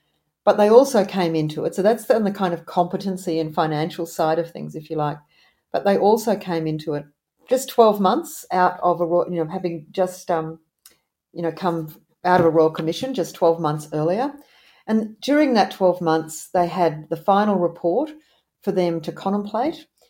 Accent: Australian